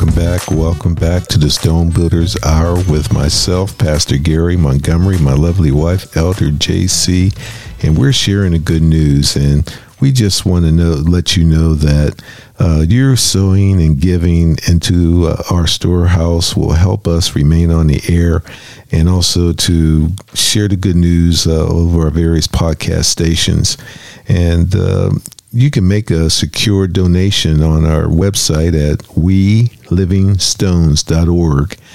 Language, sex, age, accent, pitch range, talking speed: English, male, 50-69, American, 80-100 Hz, 145 wpm